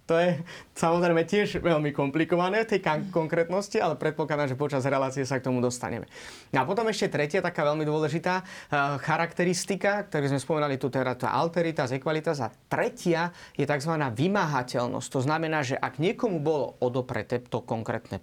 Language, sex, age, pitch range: Slovak, male, 30-49, 140-185 Hz